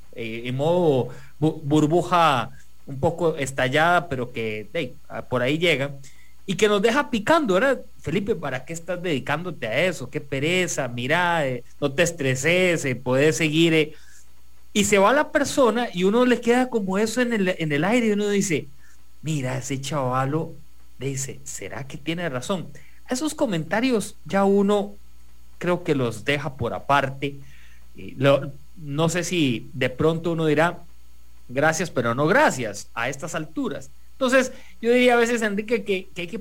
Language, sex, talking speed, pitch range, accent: English, male, 165 wpm, 135-205 Hz, Mexican